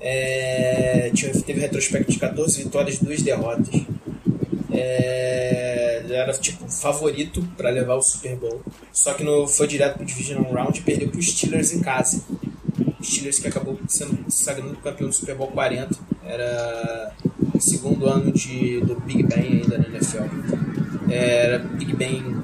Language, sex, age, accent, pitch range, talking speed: Portuguese, male, 20-39, Brazilian, 125-170 Hz, 150 wpm